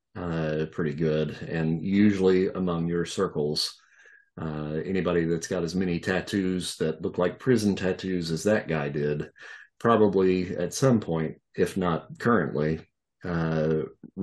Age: 40-59